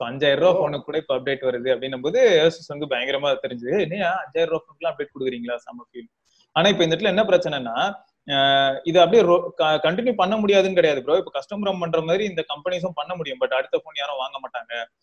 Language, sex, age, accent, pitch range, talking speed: English, male, 20-39, Indian, 140-190 Hz, 205 wpm